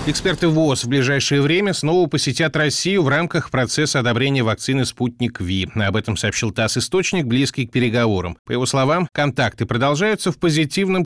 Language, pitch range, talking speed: Russian, 110-140 Hz, 165 wpm